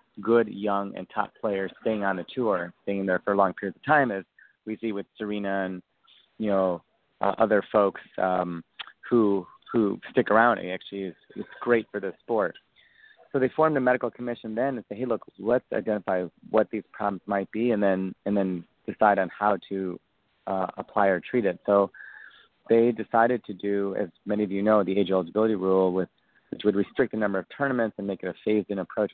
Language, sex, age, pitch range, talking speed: English, male, 30-49, 95-115 Hz, 205 wpm